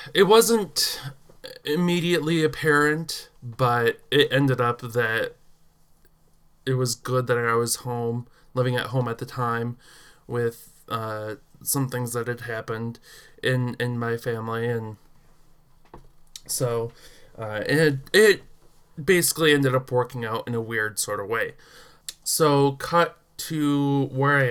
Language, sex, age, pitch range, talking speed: English, male, 20-39, 120-140 Hz, 130 wpm